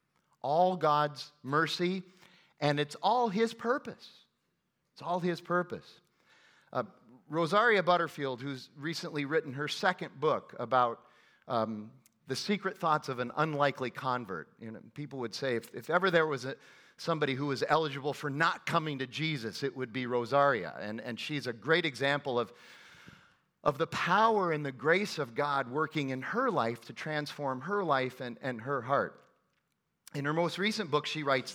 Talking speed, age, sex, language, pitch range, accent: 165 wpm, 40-59, male, English, 135-180 Hz, American